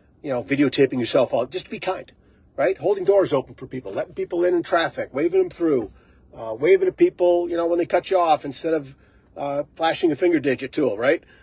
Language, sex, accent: English, male, American